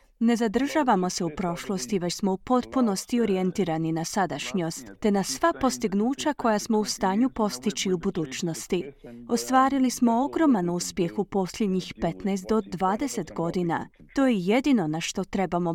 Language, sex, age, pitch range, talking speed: Croatian, female, 30-49, 180-250 Hz, 150 wpm